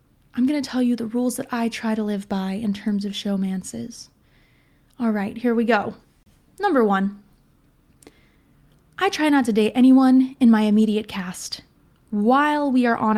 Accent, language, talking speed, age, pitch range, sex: American, English, 175 wpm, 20-39, 220-275 Hz, female